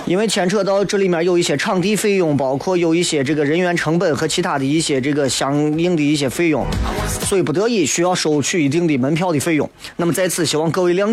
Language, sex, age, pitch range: Chinese, male, 30-49, 150-205 Hz